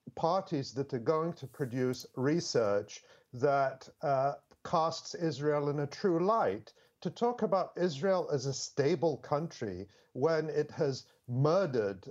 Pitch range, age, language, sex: 145-175 Hz, 50-69, English, male